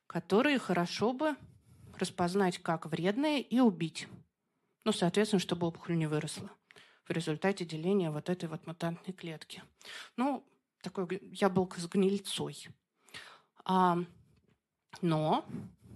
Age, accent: 30-49, native